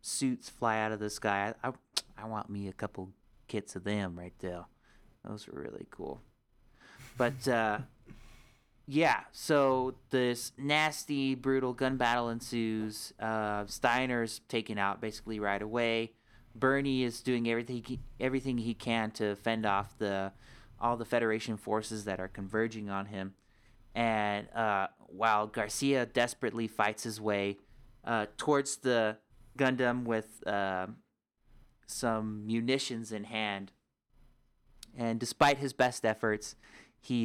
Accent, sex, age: American, male, 30-49